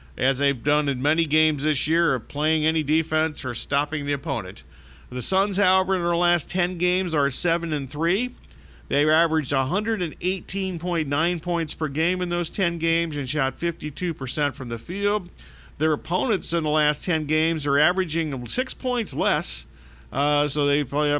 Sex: male